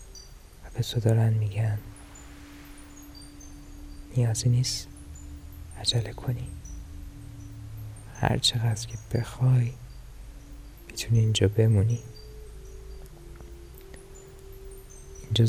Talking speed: 60 wpm